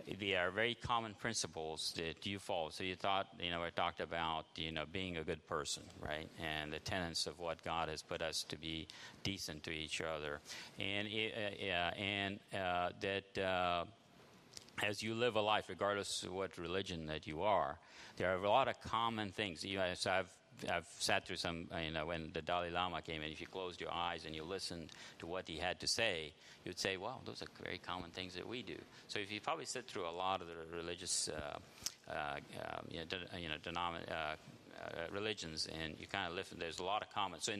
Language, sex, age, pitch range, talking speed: English, male, 50-69, 80-100 Hz, 220 wpm